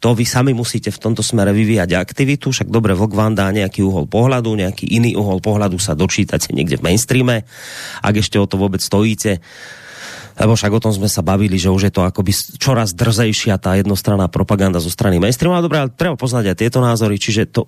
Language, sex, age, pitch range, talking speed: Slovak, male, 30-49, 95-115 Hz, 205 wpm